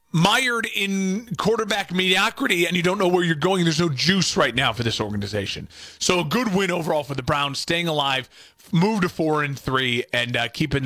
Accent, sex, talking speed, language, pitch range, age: American, male, 205 wpm, English, 150-190 Hz, 40-59